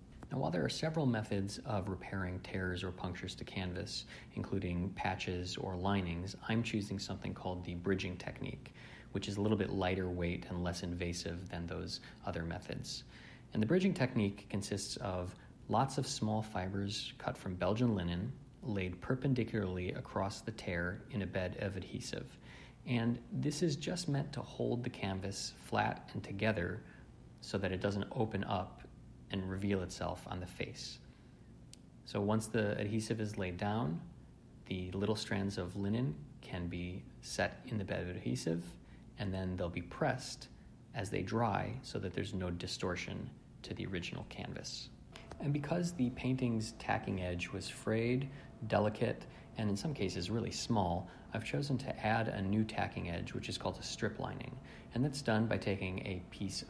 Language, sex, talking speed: English, male, 170 wpm